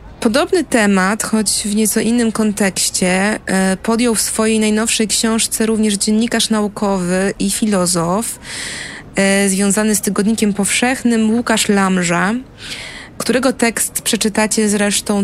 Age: 20-39